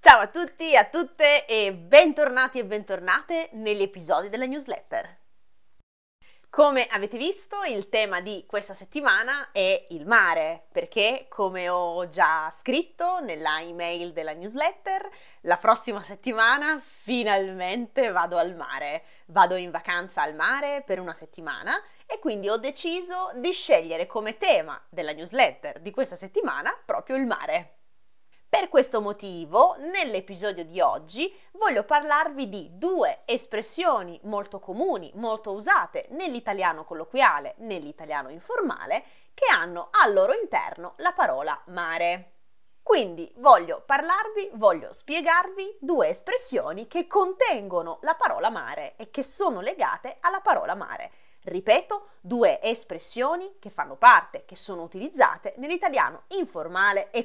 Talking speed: 130 wpm